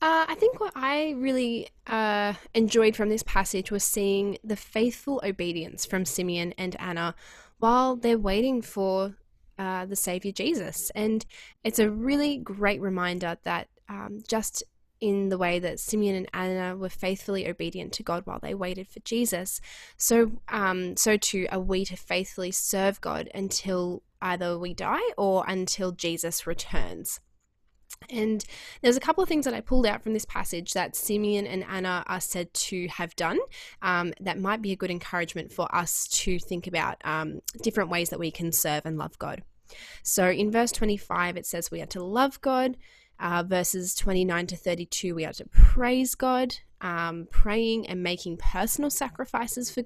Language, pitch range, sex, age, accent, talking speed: English, 180-230 Hz, female, 10-29, Australian, 175 wpm